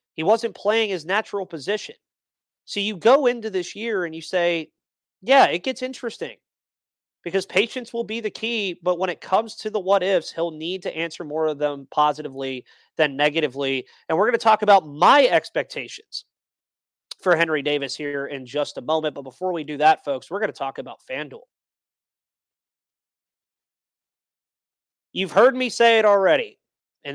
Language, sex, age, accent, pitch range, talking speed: English, male, 30-49, American, 155-200 Hz, 170 wpm